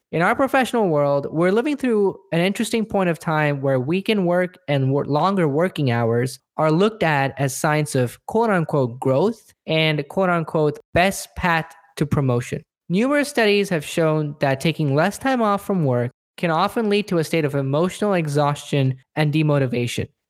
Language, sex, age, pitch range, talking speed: English, male, 10-29, 145-190 Hz, 165 wpm